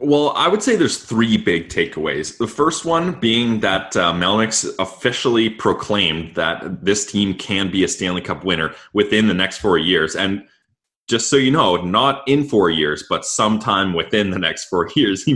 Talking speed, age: 190 wpm, 20-39